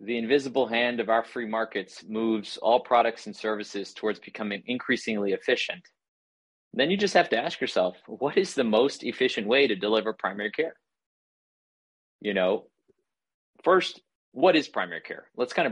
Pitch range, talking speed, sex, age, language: 100-120 Hz, 160 wpm, male, 30-49, English